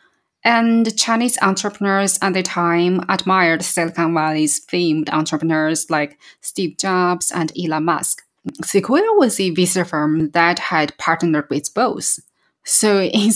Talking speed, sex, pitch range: 130 wpm, female, 155-185 Hz